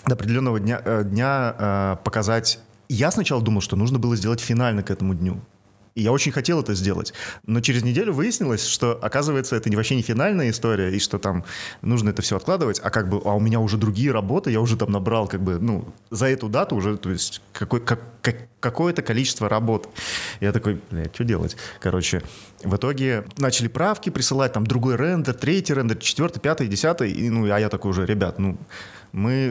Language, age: Russian, 30-49